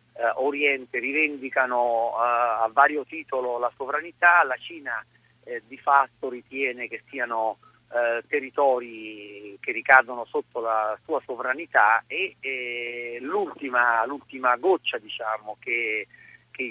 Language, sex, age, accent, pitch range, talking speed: Italian, male, 40-59, native, 115-150 Hz, 120 wpm